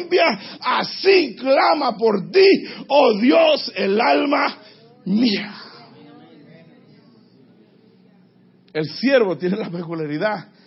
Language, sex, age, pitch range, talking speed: Spanish, male, 50-69, 175-235 Hz, 80 wpm